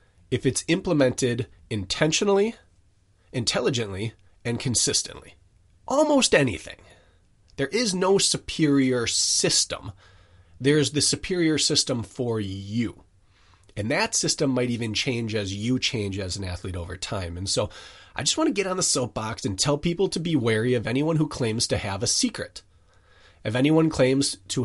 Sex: male